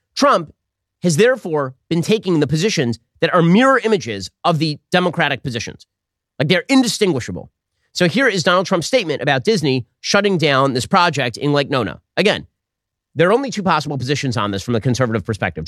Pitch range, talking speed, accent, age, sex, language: 130-200 Hz, 175 wpm, American, 30-49, male, English